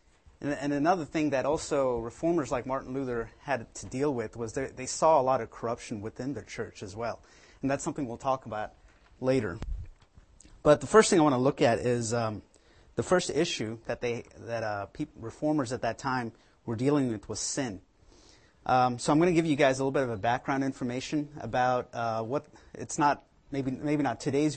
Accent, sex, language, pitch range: American, male, English, 115-145 Hz